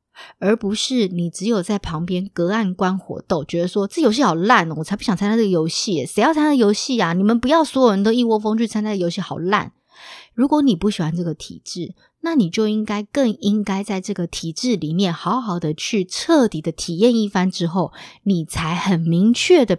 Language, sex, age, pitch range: Chinese, female, 20-39, 170-225 Hz